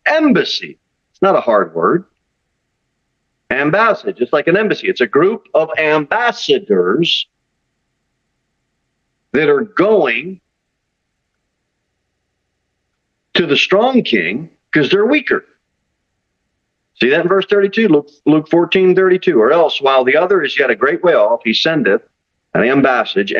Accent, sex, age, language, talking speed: American, male, 50-69, English, 135 wpm